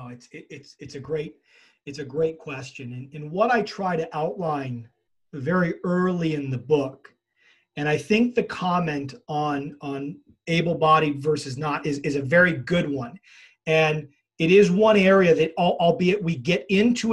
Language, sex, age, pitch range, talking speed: English, male, 40-59, 150-185 Hz, 170 wpm